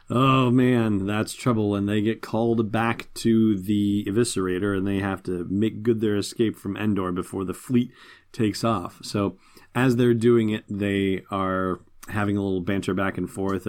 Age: 30-49